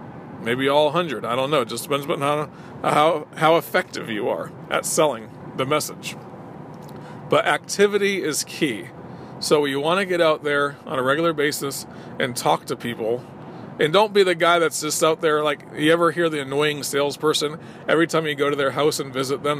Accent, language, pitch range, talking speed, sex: American, English, 135-160 Hz, 195 wpm, male